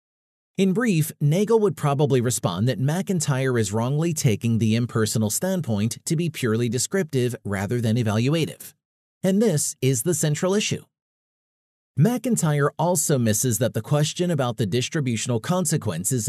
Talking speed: 135 wpm